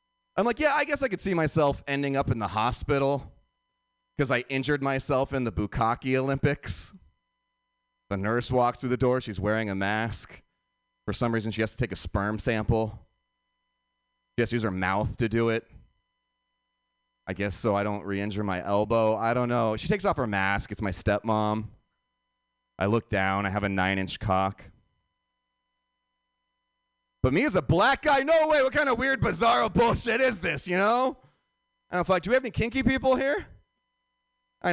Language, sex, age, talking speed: English, male, 30-49, 185 wpm